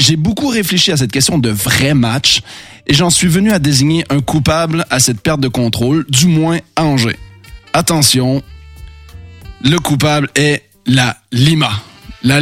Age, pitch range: 20-39, 130-175 Hz